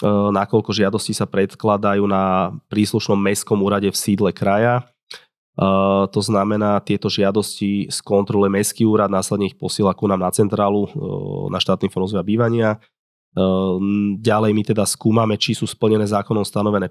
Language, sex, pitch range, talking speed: Slovak, male, 100-115 Hz, 150 wpm